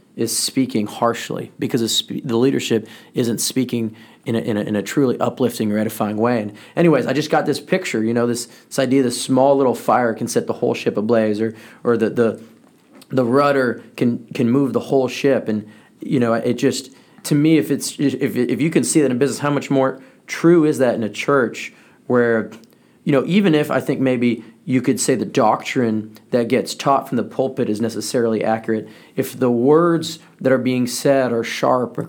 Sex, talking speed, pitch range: male, 210 wpm, 115-135 Hz